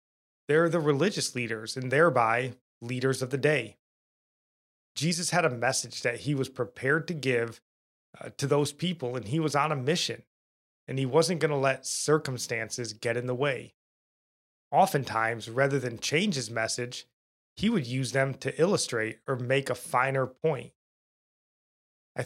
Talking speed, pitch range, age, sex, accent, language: 160 wpm, 120-145 Hz, 20-39, male, American, English